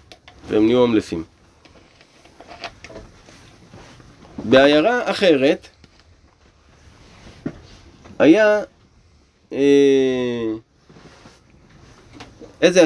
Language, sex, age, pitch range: Hebrew, male, 30-49, 110-170 Hz